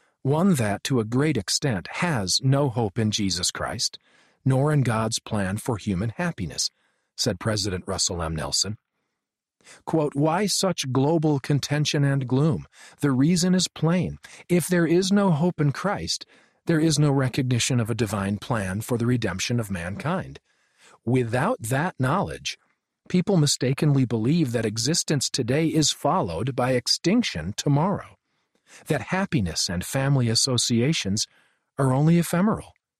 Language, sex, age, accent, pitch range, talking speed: English, male, 50-69, American, 115-155 Hz, 140 wpm